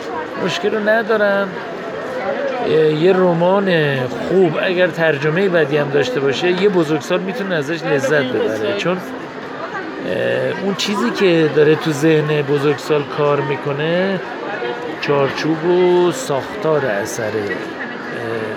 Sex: male